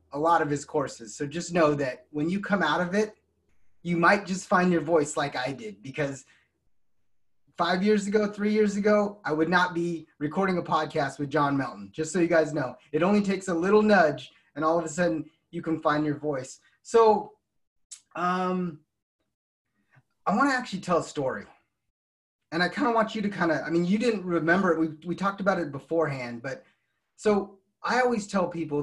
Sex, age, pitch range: male, 20-39, 155-195 Hz